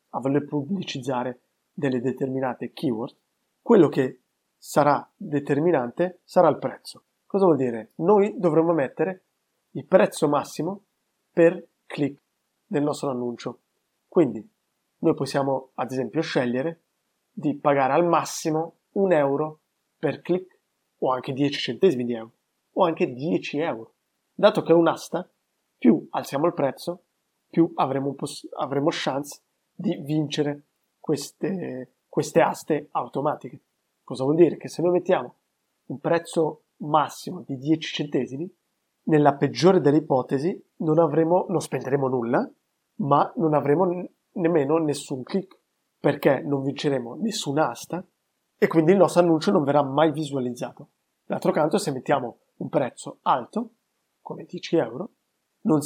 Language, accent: Italian, native